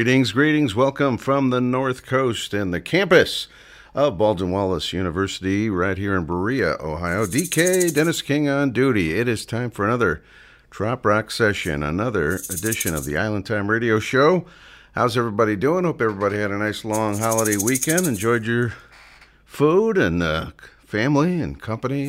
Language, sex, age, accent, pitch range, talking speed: English, male, 50-69, American, 90-125 Hz, 160 wpm